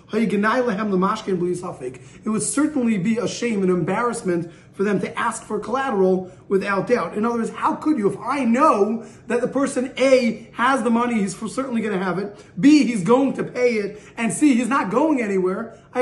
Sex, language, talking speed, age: male, English, 190 wpm, 30-49